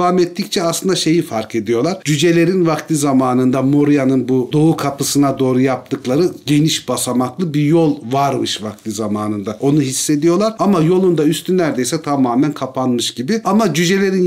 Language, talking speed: Turkish, 140 wpm